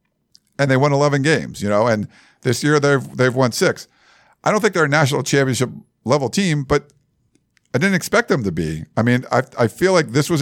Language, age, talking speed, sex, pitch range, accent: English, 50-69, 220 wpm, male, 120-175 Hz, American